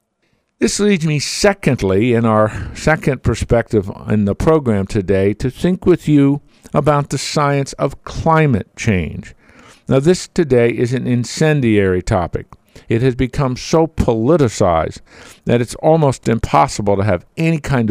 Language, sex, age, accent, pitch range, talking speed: English, male, 50-69, American, 105-150 Hz, 140 wpm